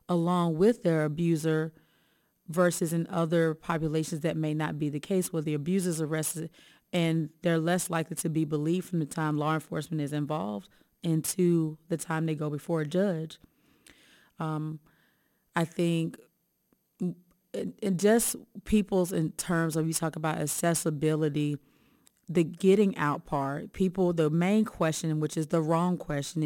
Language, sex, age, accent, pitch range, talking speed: English, female, 30-49, American, 155-190 Hz, 155 wpm